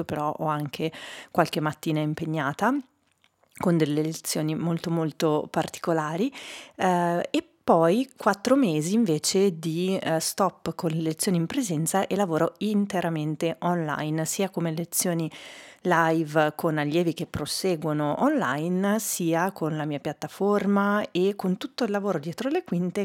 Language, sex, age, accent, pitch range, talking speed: Italian, female, 30-49, native, 160-205 Hz, 135 wpm